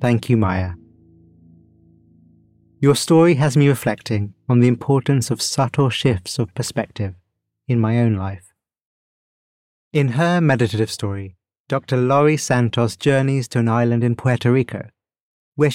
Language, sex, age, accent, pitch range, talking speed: English, male, 30-49, British, 105-135 Hz, 135 wpm